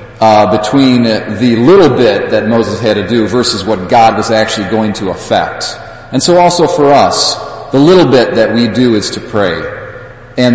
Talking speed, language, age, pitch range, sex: 190 wpm, English, 40-59, 105-125 Hz, male